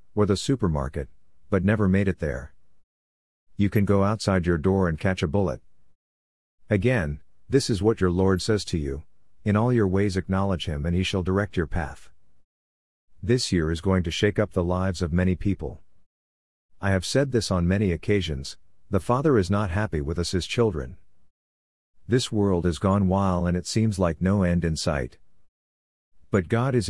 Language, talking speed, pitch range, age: English, 185 wpm, 80-100 Hz, 50-69